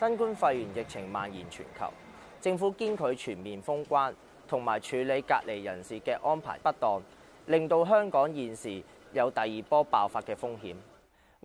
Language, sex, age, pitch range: Chinese, male, 20-39, 135-190 Hz